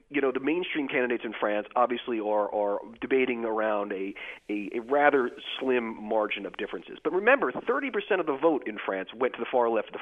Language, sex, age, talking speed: English, male, 40-59, 210 wpm